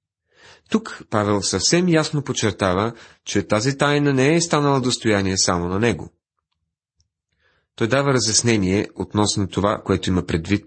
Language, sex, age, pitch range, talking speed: Bulgarian, male, 40-59, 95-125 Hz, 130 wpm